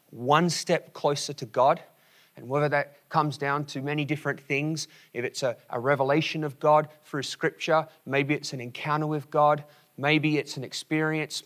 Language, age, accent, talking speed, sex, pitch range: English, 30-49, Australian, 175 wpm, male, 140-160 Hz